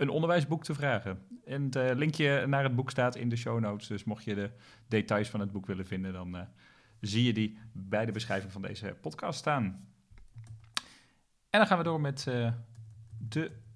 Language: Dutch